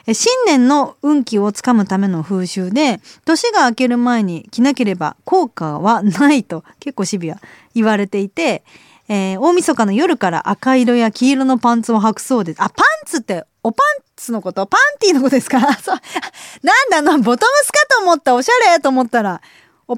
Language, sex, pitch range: Japanese, female, 205-320 Hz